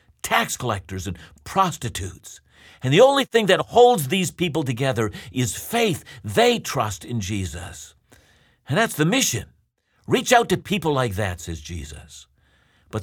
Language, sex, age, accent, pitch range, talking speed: English, male, 50-69, American, 110-170 Hz, 145 wpm